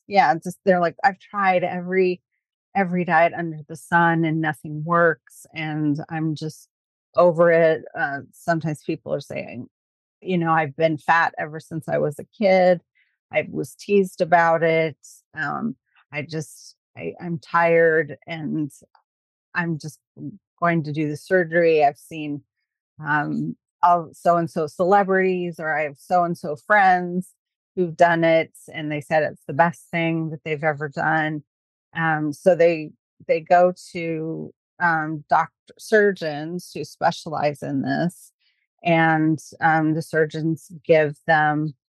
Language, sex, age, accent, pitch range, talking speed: English, female, 30-49, American, 150-175 Hz, 145 wpm